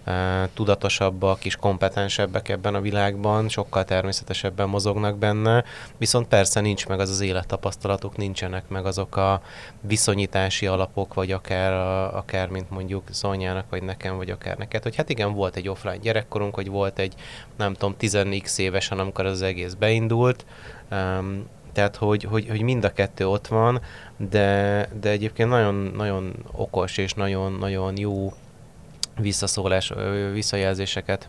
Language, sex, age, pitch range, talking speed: Hungarian, male, 30-49, 95-105 Hz, 140 wpm